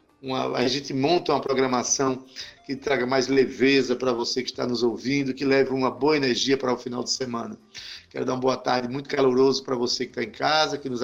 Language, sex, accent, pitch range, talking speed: Portuguese, male, Brazilian, 130-150 Hz, 225 wpm